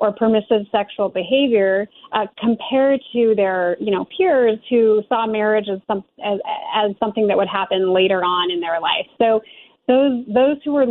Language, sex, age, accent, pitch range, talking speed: English, female, 30-49, American, 195-230 Hz, 175 wpm